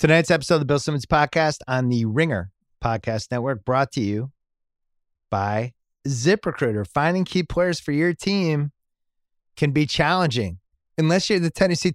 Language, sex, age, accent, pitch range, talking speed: English, male, 30-49, American, 100-150 Hz, 150 wpm